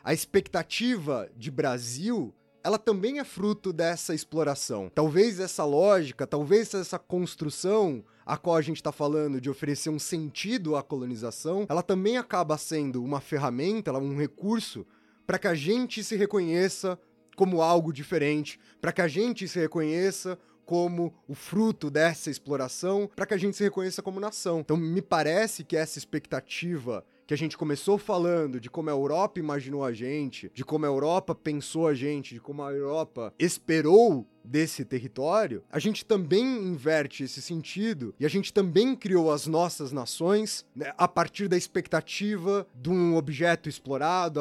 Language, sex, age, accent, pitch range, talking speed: Portuguese, male, 20-39, Brazilian, 145-185 Hz, 160 wpm